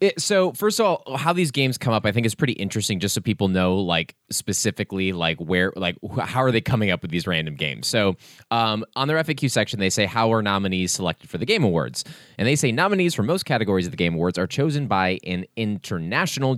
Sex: male